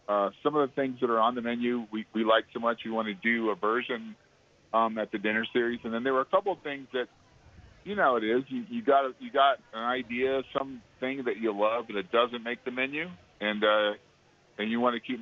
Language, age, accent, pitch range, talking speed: English, 50-69, American, 110-130 Hz, 255 wpm